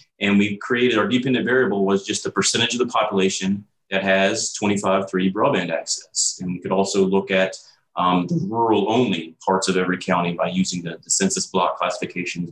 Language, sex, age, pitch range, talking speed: English, male, 30-49, 95-110 Hz, 185 wpm